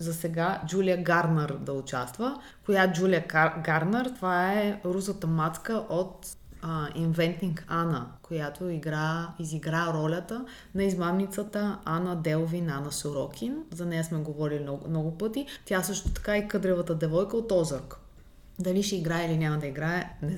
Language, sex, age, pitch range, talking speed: Bulgarian, female, 30-49, 160-195 Hz, 150 wpm